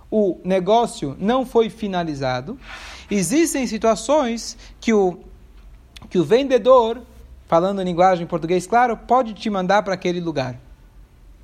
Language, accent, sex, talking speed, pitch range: Portuguese, Brazilian, male, 130 wpm, 185-250 Hz